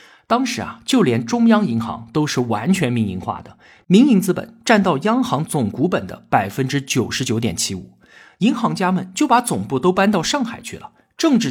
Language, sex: Chinese, male